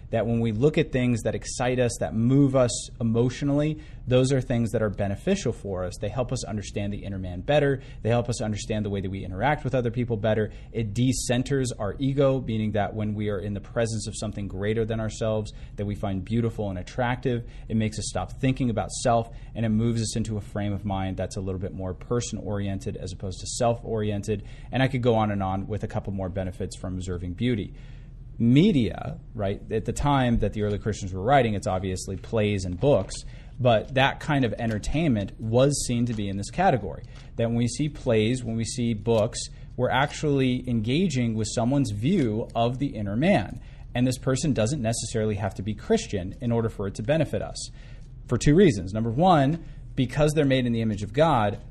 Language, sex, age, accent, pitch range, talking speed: English, male, 30-49, American, 105-130 Hz, 210 wpm